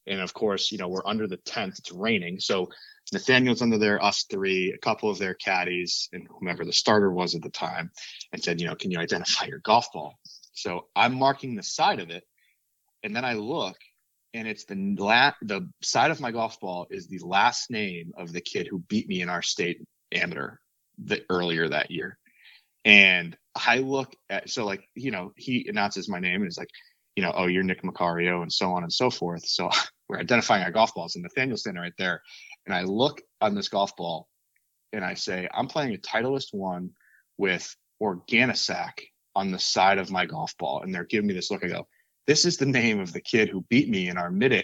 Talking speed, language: 220 wpm, English